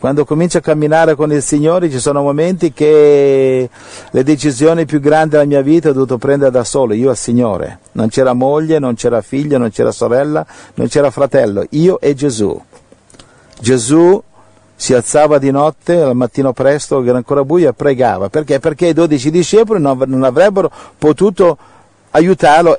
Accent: native